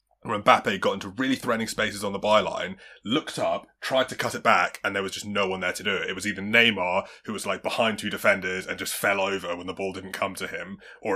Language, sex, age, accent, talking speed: English, male, 20-39, British, 260 wpm